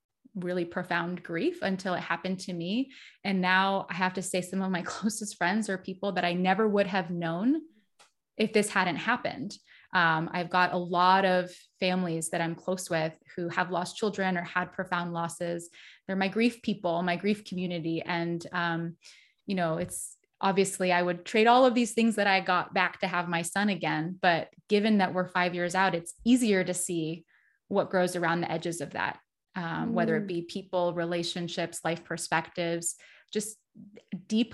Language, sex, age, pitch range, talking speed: English, female, 20-39, 175-200 Hz, 185 wpm